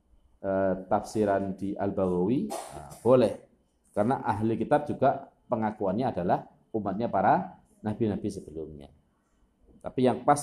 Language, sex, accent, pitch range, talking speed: Indonesian, male, native, 105-135 Hz, 110 wpm